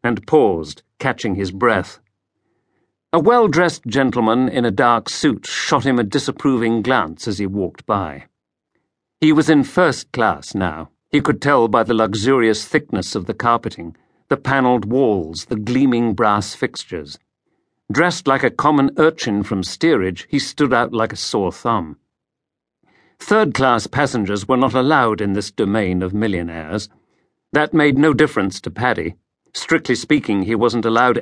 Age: 50-69